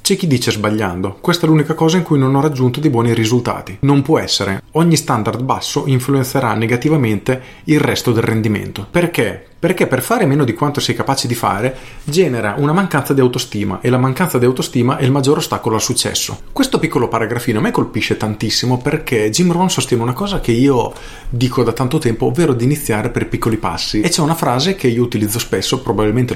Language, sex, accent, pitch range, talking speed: Italian, male, native, 115-155 Hz, 205 wpm